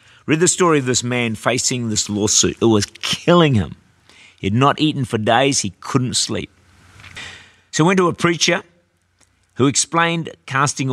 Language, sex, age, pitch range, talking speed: English, male, 50-69, 100-135 Hz, 170 wpm